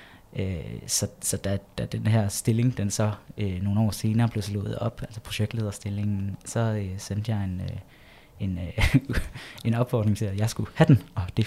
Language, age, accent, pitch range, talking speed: Danish, 20-39, native, 100-115 Hz, 195 wpm